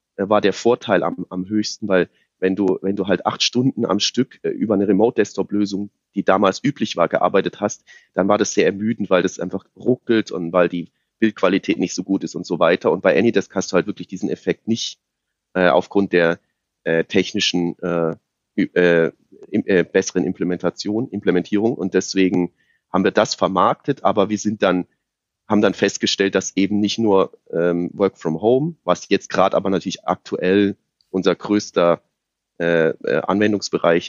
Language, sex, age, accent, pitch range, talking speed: German, male, 30-49, German, 90-105 Hz, 175 wpm